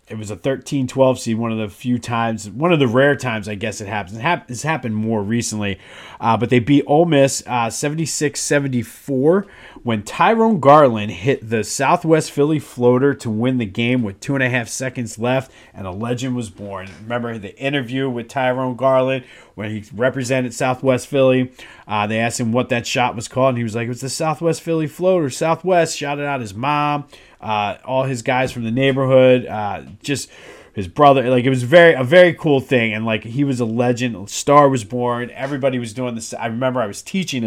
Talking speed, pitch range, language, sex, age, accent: 205 wpm, 110-135 Hz, English, male, 30-49, American